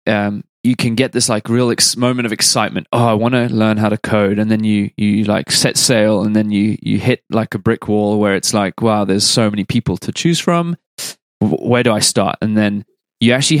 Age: 20-39